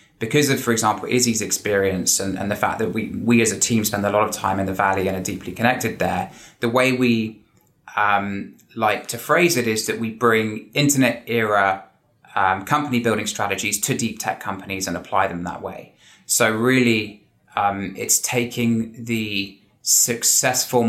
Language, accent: English, British